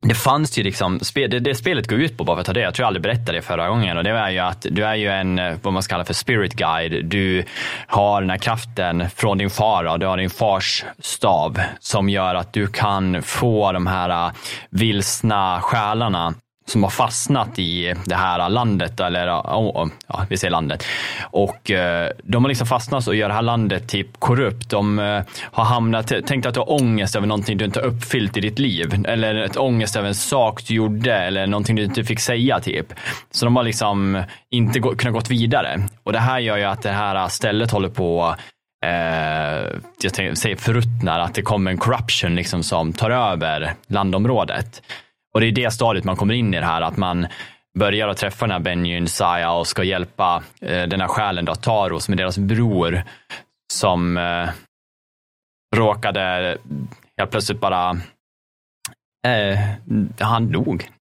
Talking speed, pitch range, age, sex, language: 190 wpm, 90-115 Hz, 20-39, male, Swedish